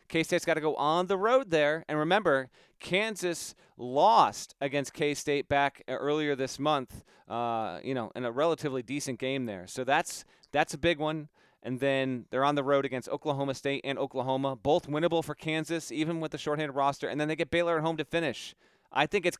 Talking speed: 200 wpm